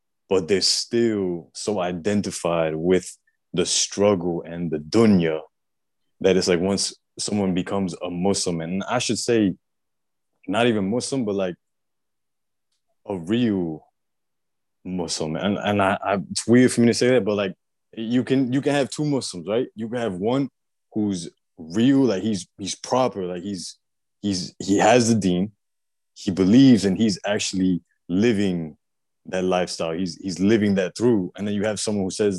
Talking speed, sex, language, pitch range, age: 165 wpm, male, English, 90-110 Hz, 20-39